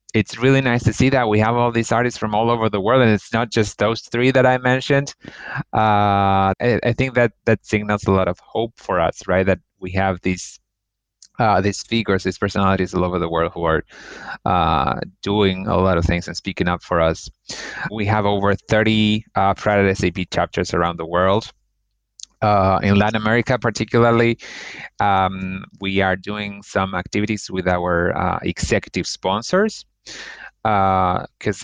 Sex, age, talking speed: male, 30-49, 175 wpm